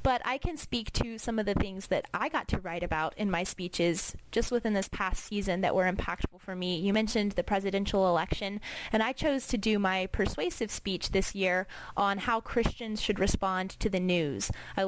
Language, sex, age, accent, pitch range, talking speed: English, female, 20-39, American, 185-210 Hz, 210 wpm